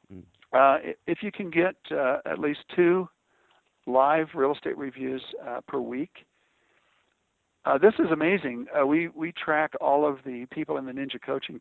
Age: 60-79